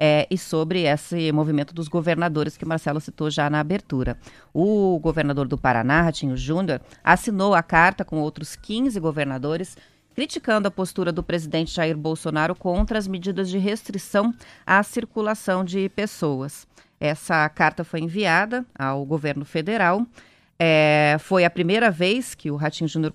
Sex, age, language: female, 30-49, Portuguese